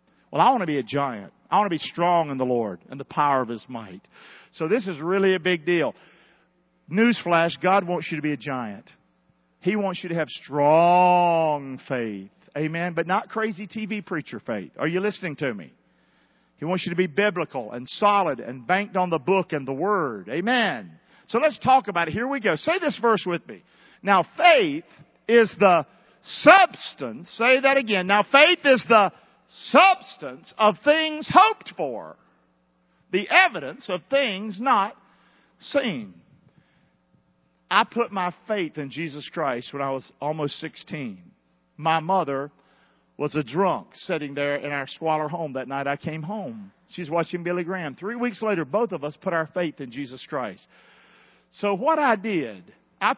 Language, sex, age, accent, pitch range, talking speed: English, male, 50-69, American, 145-205 Hz, 175 wpm